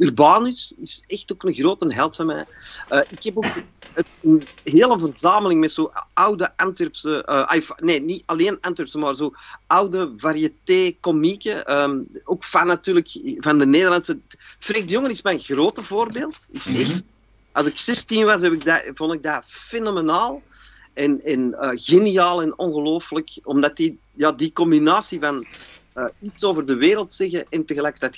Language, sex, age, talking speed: Dutch, male, 40-59, 165 wpm